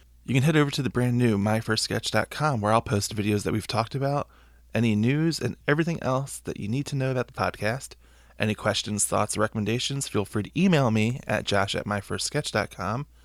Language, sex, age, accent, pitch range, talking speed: English, male, 20-39, American, 95-125 Hz, 200 wpm